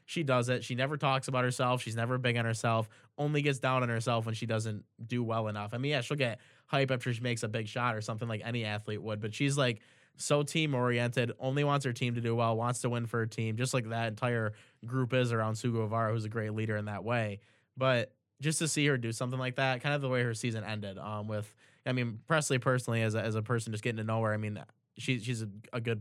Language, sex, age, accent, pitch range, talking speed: English, male, 20-39, American, 110-130 Hz, 265 wpm